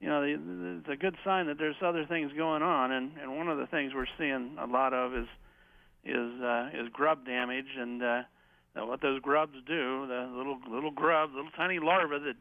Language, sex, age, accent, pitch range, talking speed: English, male, 50-69, American, 130-180 Hz, 210 wpm